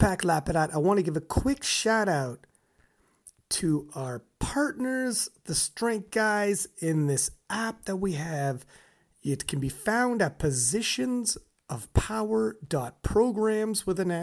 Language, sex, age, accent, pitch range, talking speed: English, male, 30-49, American, 140-210 Hz, 120 wpm